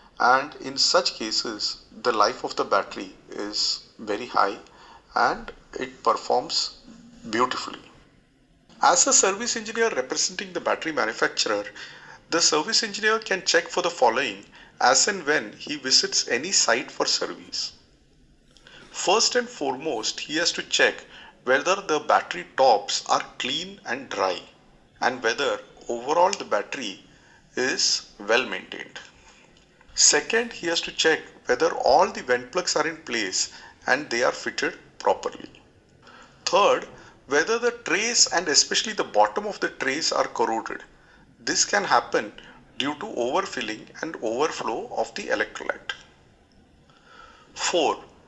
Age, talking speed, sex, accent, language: 40-59, 135 wpm, male, Indian, English